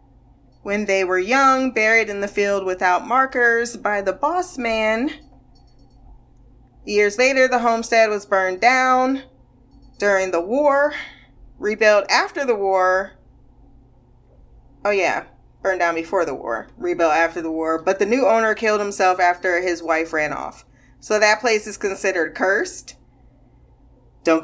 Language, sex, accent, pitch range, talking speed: English, female, American, 185-245 Hz, 140 wpm